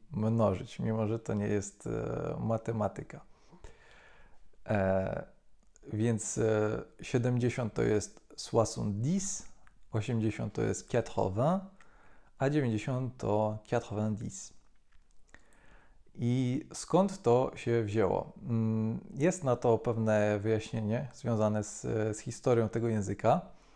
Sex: male